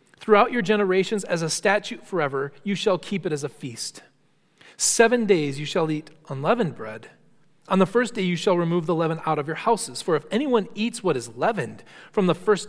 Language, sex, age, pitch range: English, male, 40-59, 160-220 Hz